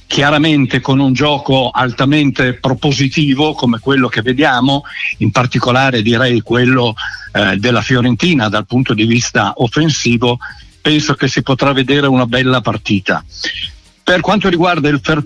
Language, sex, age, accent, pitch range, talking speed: Italian, male, 60-79, native, 125-145 Hz, 140 wpm